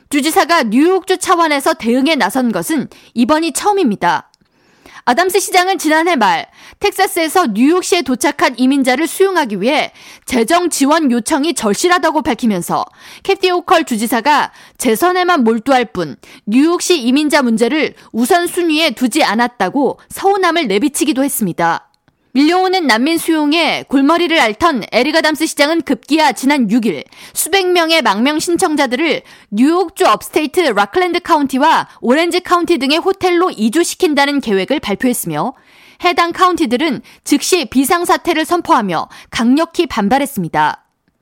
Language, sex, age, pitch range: Korean, female, 20-39, 255-350 Hz